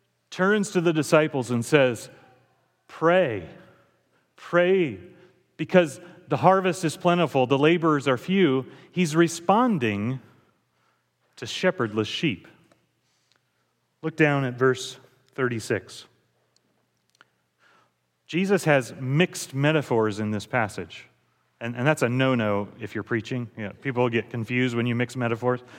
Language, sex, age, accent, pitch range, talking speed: English, male, 40-59, American, 115-170 Hz, 115 wpm